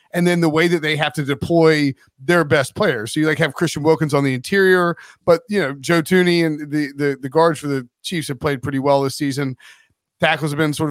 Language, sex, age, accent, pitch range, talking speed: English, male, 40-59, American, 145-190 Hz, 240 wpm